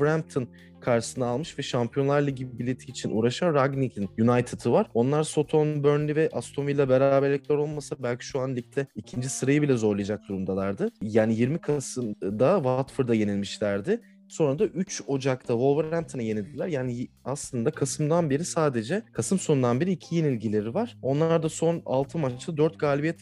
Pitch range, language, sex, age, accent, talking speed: 115-150 Hz, Turkish, male, 30-49, native, 150 wpm